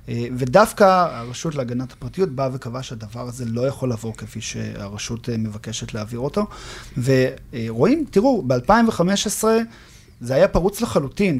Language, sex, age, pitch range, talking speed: Hebrew, male, 40-59, 120-160 Hz, 120 wpm